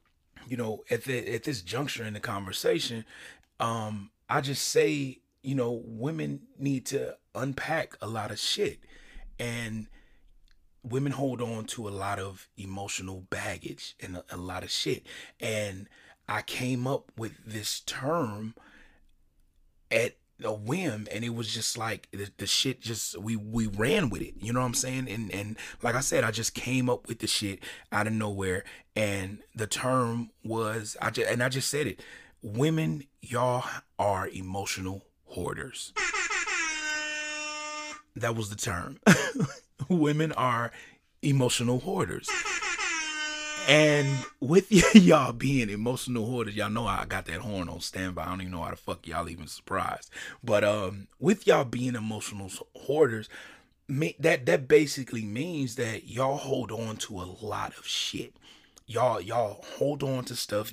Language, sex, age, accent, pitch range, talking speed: English, male, 30-49, American, 100-130 Hz, 155 wpm